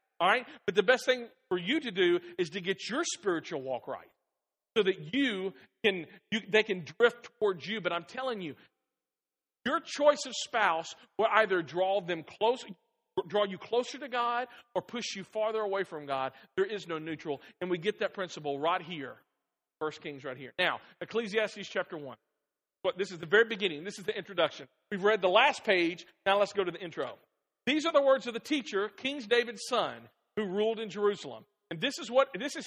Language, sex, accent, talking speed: English, male, American, 205 wpm